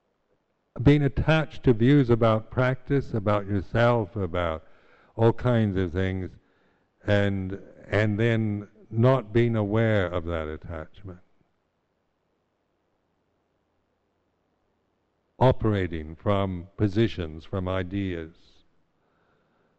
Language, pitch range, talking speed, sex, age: English, 90-115 Hz, 80 wpm, male, 60-79